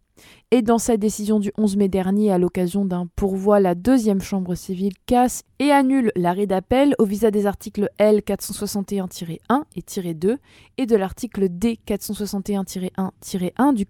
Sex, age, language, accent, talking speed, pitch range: female, 20-39, French, French, 140 wpm, 195-235 Hz